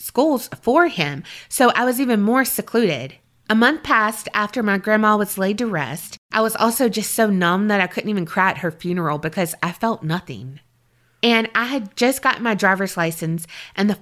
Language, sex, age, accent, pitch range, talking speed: English, female, 20-39, American, 180-230 Hz, 200 wpm